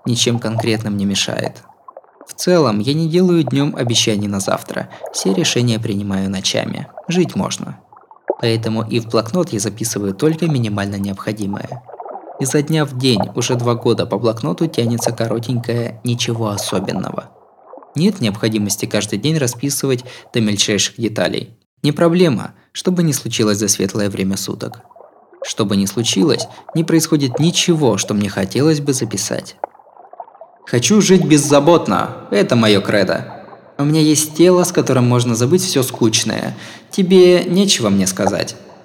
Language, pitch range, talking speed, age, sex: Russian, 105-155 Hz, 140 wpm, 20-39, male